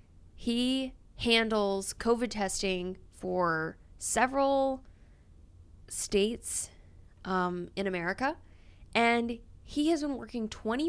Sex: female